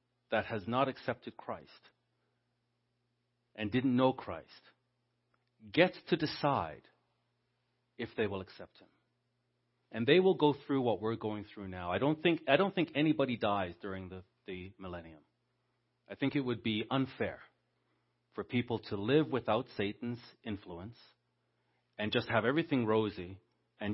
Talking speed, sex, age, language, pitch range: 145 wpm, male, 40-59, English, 100-125 Hz